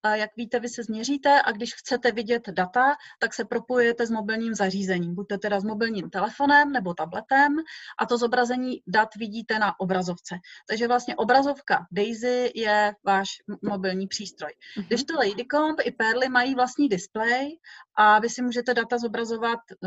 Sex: female